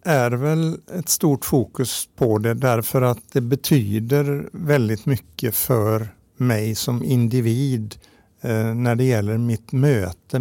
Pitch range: 110-135 Hz